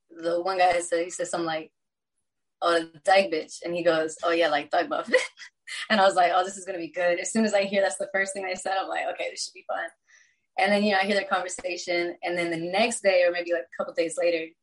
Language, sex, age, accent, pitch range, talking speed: English, female, 20-39, American, 165-195 Hz, 280 wpm